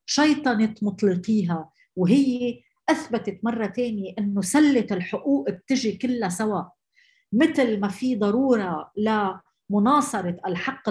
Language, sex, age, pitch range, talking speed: Arabic, female, 40-59, 190-265 Hz, 100 wpm